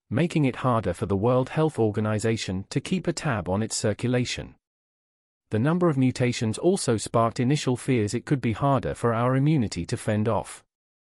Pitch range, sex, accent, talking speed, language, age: 110-140 Hz, male, British, 180 wpm, English, 40-59